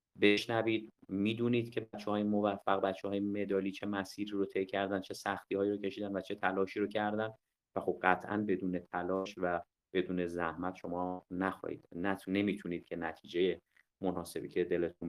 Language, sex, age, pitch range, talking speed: Persian, male, 30-49, 95-120 Hz, 160 wpm